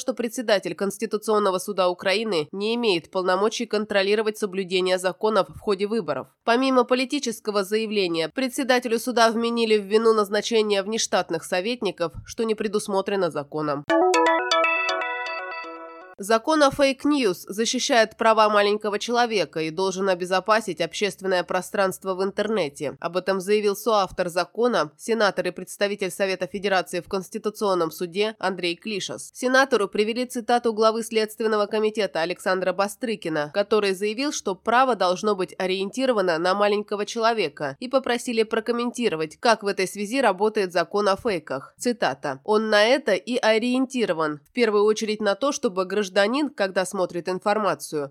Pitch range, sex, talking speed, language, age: 185-225 Hz, female, 130 wpm, Russian, 20-39